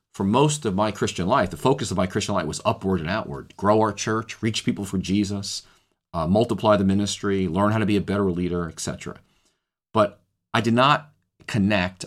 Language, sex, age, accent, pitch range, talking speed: English, male, 40-59, American, 85-100 Hz, 200 wpm